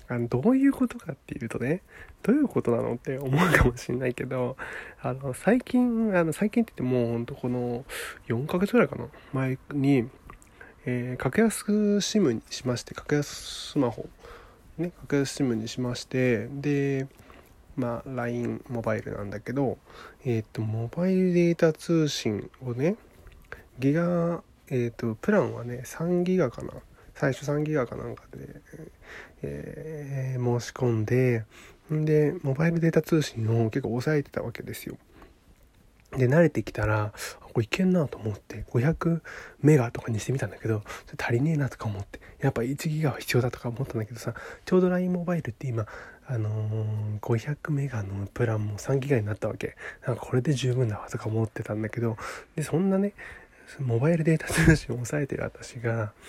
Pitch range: 115-155 Hz